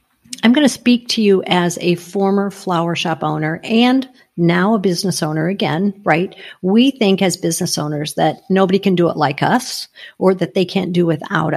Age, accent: 50-69, American